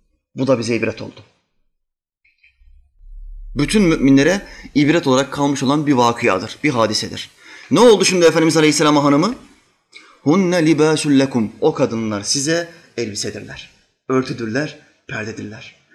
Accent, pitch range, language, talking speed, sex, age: native, 115-170 Hz, Turkish, 115 wpm, male, 30-49